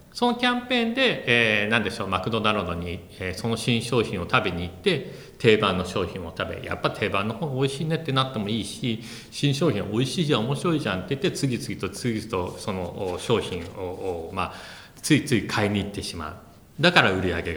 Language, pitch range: Japanese, 95-145 Hz